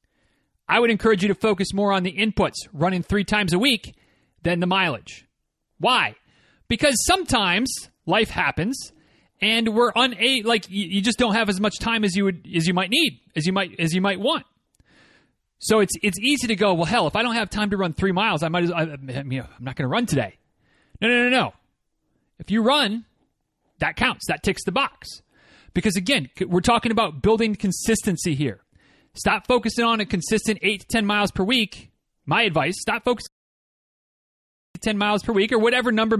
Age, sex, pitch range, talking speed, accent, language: 30-49, male, 185-230 Hz, 205 wpm, American, English